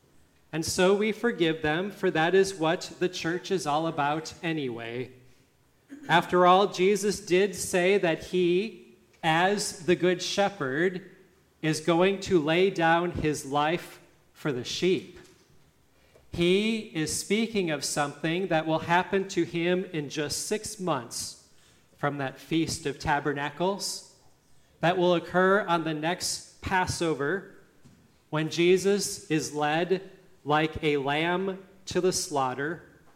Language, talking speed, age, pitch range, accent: English, 130 wpm, 30-49, 150-190 Hz, American